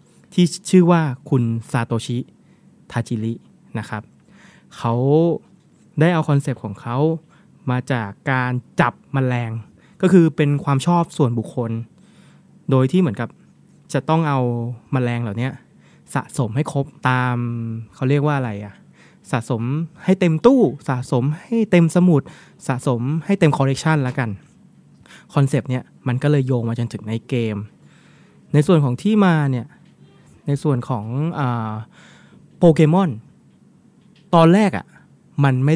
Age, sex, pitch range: 20-39, male, 125-165 Hz